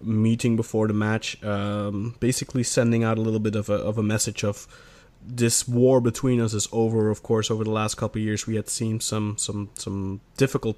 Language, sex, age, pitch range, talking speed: English, male, 20-39, 110-130 Hz, 210 wpm